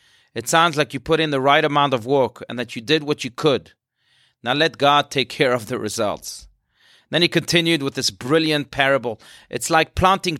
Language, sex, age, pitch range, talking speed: English, male, 30-49, 120-155 Hz, 210 wpm